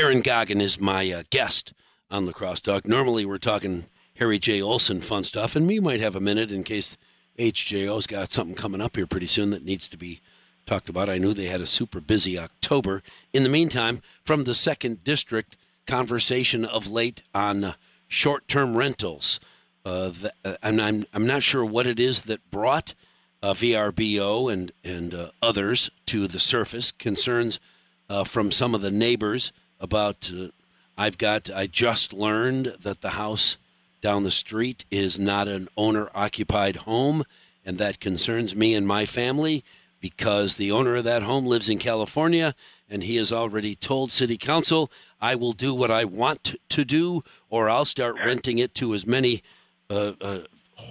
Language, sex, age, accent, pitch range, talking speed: English, male, 50-69, American, 100-125 Hz, 175 wpm